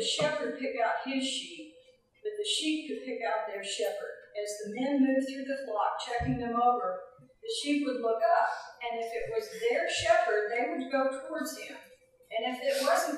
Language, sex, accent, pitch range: English, female, American, 220-300 Hz